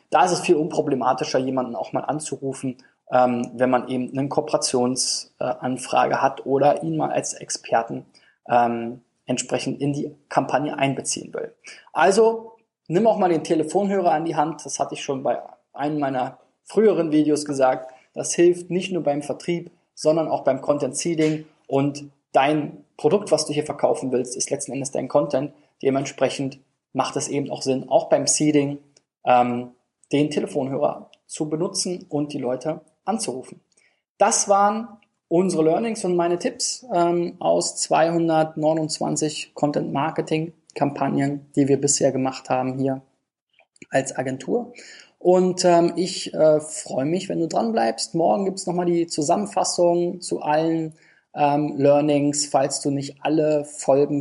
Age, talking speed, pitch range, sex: 20-39, 145 wpm, 135-170 Hz, male